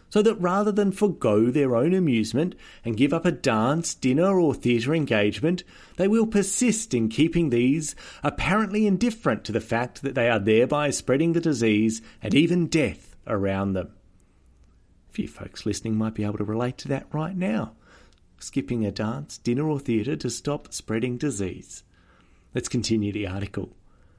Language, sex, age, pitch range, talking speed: English, male, 30-49, 105-160 Hz, 165 wpm